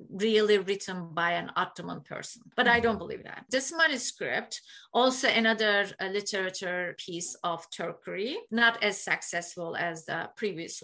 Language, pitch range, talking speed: Turkish, 185-235 Hz, 140 wpm